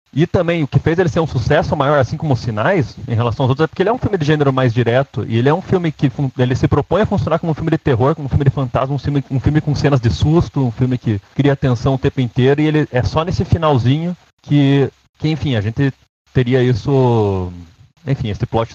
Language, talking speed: Portuguese, 260 wpm